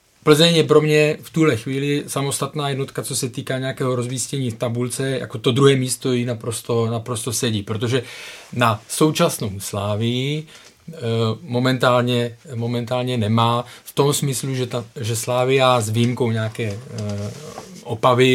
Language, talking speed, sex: Czech, 135 wpm, male